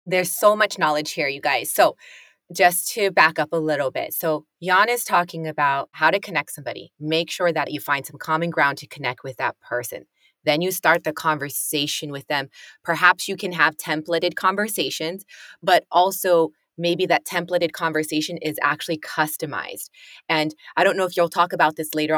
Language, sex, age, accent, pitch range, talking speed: English, female, 20-39, American, 150-185 Hz, 185 wpm